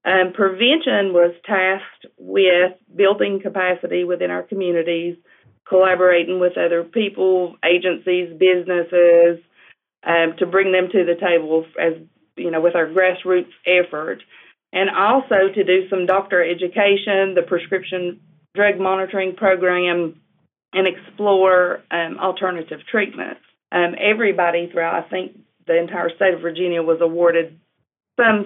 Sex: female